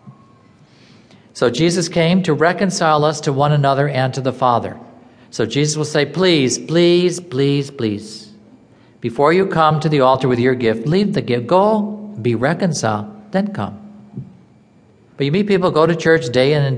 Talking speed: 175 wpm